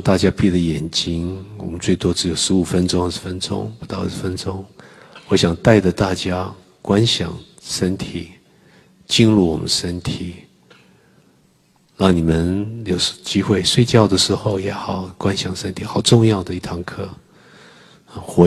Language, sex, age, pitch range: Chinese, male, 50-69, 85-95 Hz